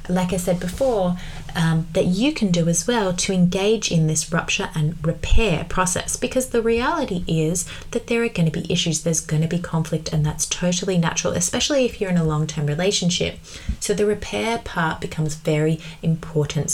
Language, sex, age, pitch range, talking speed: English, female, 20-39, 160-205 Hz, 190 wpm